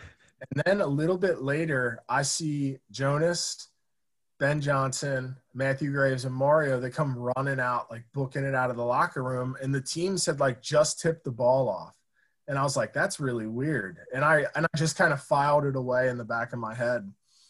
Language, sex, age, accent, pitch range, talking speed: English, male, 20-39, American, 125-150 Hz, 205 wpm